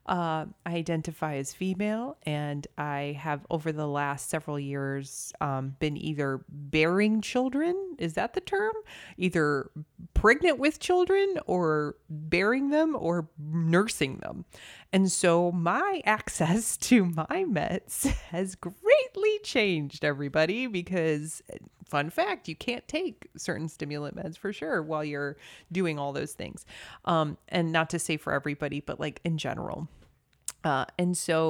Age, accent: 30-49, American